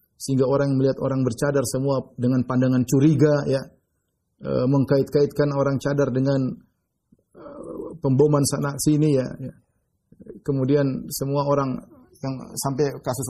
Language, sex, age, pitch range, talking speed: Indonesian, male, 30-49, 120-140 Hz, 120 wpm